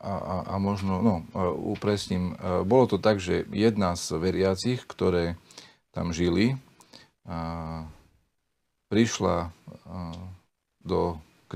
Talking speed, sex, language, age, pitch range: 120 wpm, male, Slovak, 40-59, 85-105 Hz